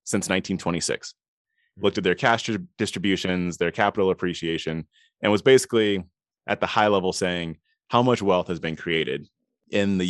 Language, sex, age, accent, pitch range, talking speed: English, male, 30-49, American, 90-115 Hz, 155 wpm